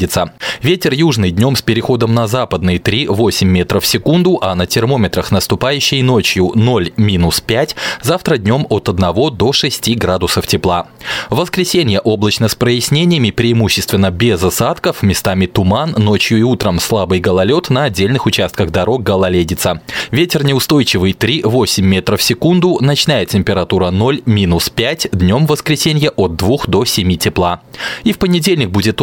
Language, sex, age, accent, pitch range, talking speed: Russian, male, 20-39, native, 95-135 Hz, 130 wpm